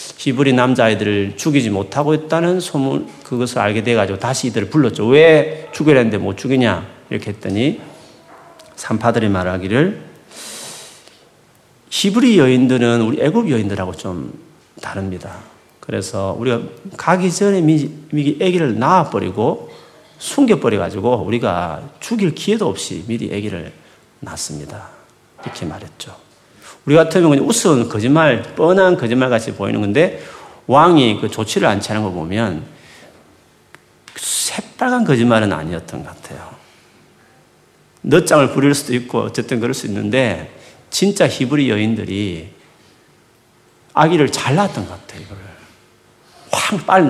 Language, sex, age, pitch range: Korean, male, 40-59, 105-155 Hz